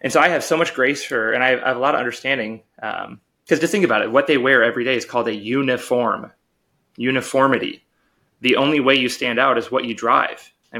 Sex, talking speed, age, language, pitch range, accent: male, 235 wpm, 20-39, English, 115-130 Hz, American